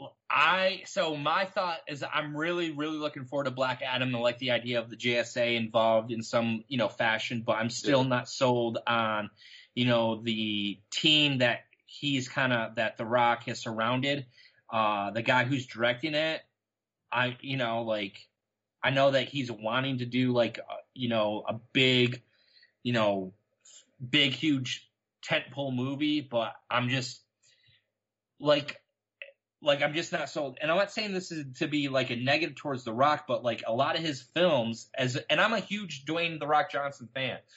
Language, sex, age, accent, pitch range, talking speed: English, male, 30-49, American, 120-150 Hz, 180 wpm